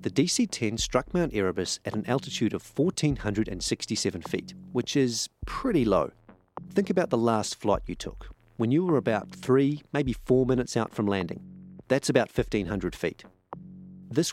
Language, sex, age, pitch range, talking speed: English, male, 40-59, 105-140 Hz, 160 wpm